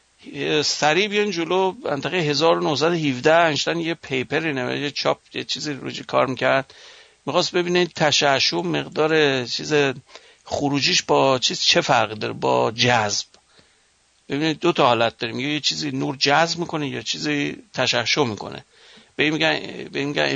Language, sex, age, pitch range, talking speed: English, male, 60-79, 135-170 Hz, 130 wpm